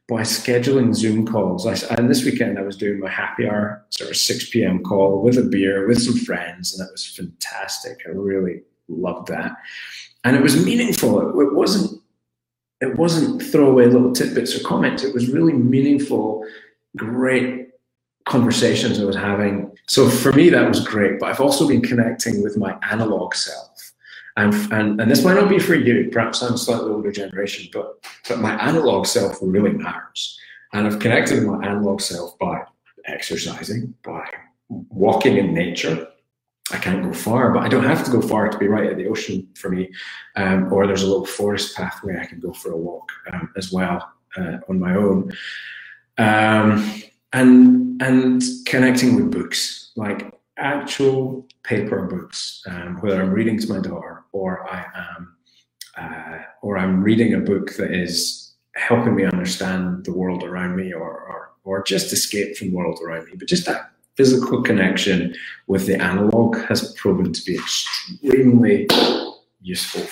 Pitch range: 95-125 Hz